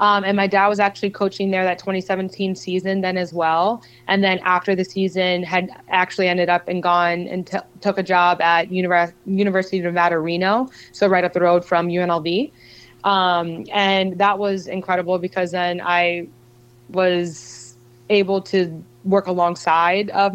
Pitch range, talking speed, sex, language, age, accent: 175-190 Hz, 160 wpm, female, English, 20-39, American